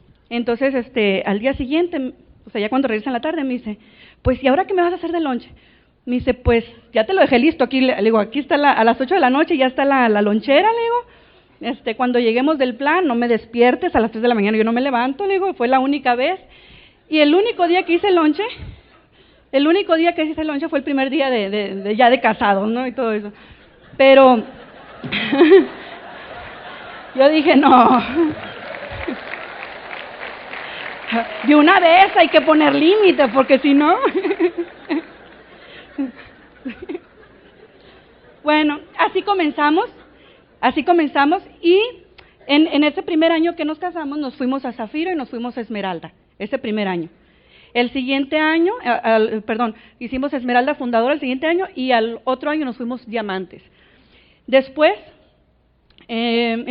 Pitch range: 240-315 Hz